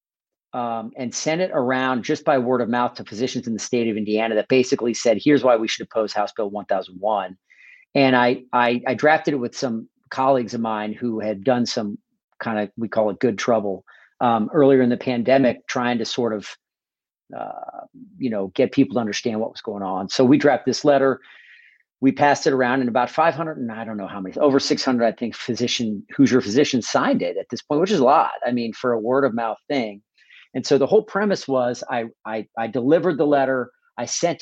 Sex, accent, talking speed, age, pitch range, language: male, American, 220 wpm, 40-59, 115-140 Hz, English